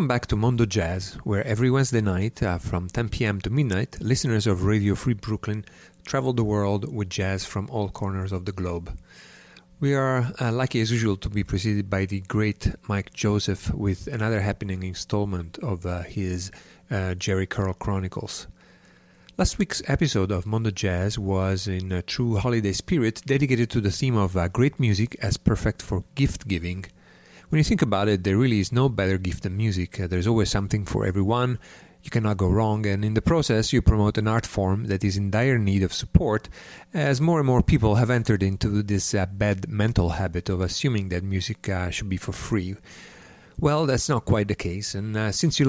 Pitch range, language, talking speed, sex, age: 95-115 Hz, English, 195 wpm, male, 40-59